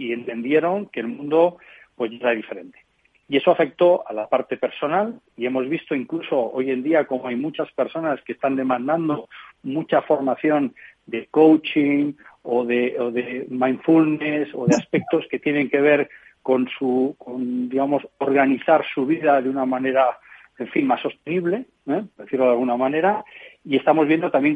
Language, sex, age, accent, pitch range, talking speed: Spanish, male, 40-59, Spanish, 125-160 Hz, 165 wpm